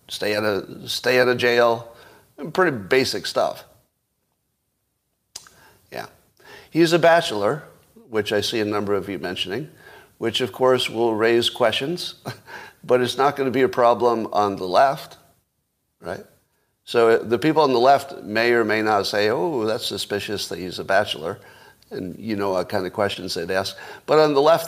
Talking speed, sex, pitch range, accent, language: 165 wpm, male, 110-135 Hz, American, English